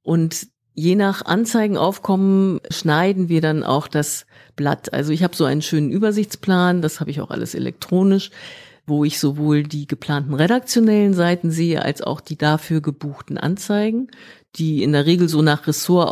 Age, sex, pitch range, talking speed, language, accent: 50-69, female, 150-190 Hz, 165 wpm, German, German